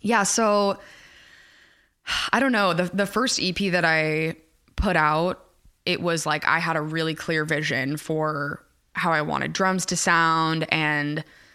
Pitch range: 150-175 Hz